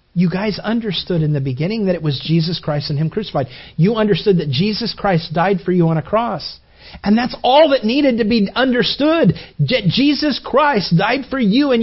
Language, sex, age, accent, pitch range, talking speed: English, male, 40-59, American, 200-265 Hz, 200 wpm